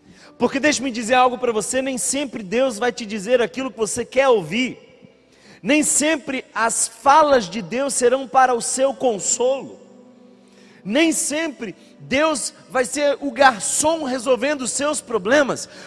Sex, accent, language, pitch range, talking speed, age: male, Brazilian, Portuguese, 185-260 Hz, 150 wpm, 40-59